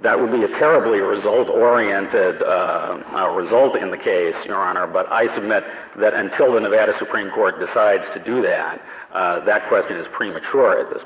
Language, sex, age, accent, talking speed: English, male, 50-69, American, 180 wpm